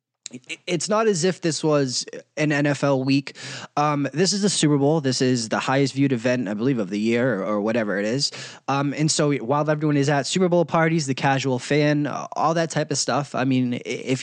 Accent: American